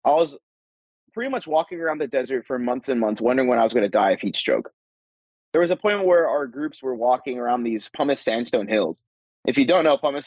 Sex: male